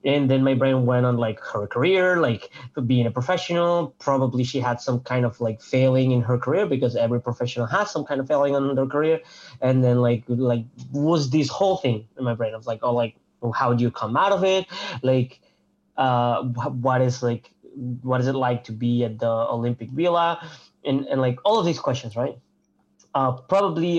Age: 20-39